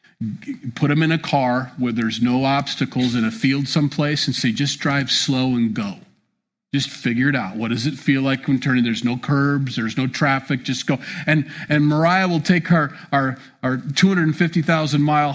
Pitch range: 130-180 Hz